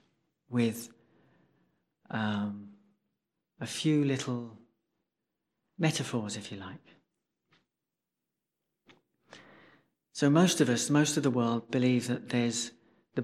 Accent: British